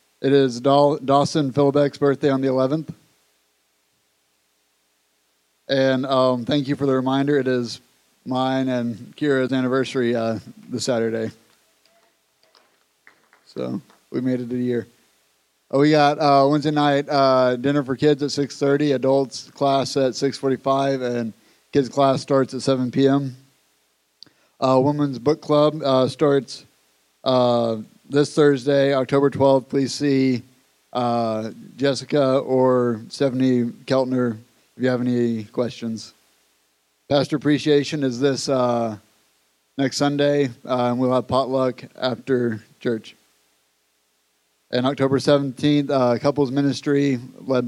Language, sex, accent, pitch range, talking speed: English, male, American, 120-140 Hz, 120 wpm